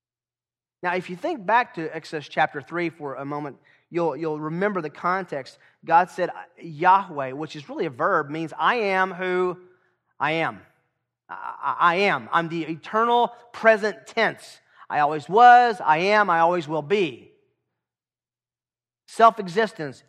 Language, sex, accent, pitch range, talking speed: English, male, American, 140-185 Hz, 145 wpm